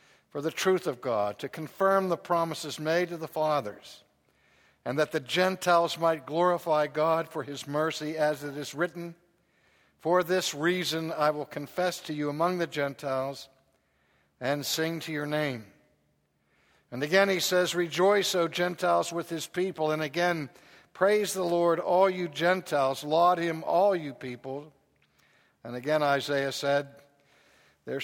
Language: English